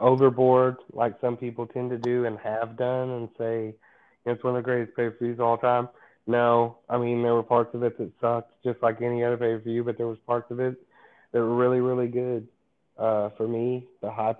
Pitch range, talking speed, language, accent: 110-120 Hz, 215 wpm, English, American